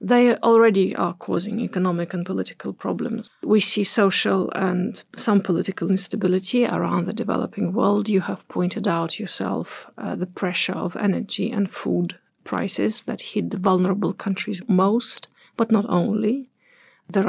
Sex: female